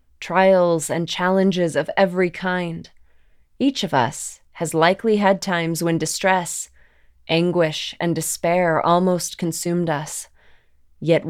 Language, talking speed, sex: English, 115 wpm, female